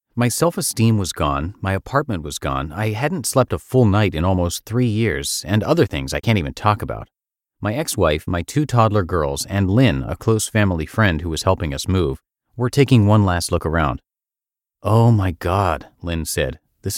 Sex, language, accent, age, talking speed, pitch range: male, English, American, 30-49, 195 wpm, 85-125 Hz